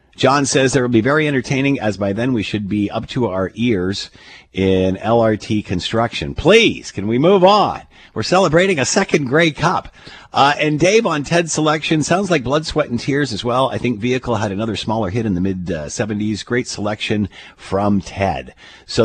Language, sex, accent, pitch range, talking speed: English, male, American, 95-135 Hz, 190 wpm